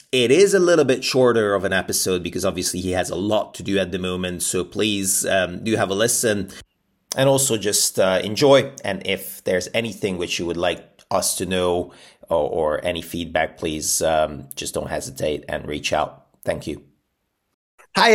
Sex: male